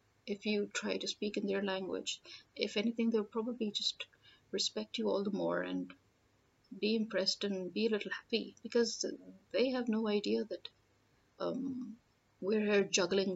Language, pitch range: English, 180-225 Hz